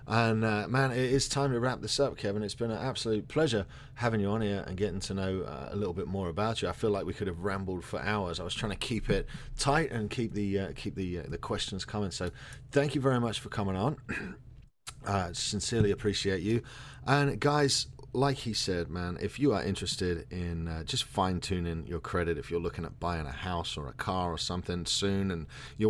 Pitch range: 90-115 Hz